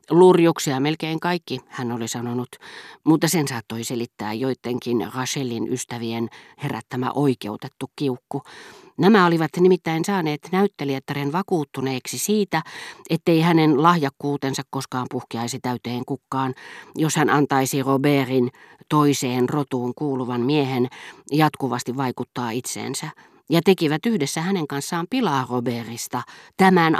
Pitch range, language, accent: 125-165 Hz, Finnish, native